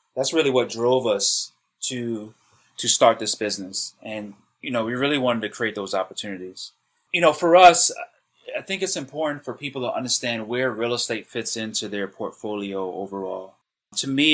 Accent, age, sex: American, 30-49, male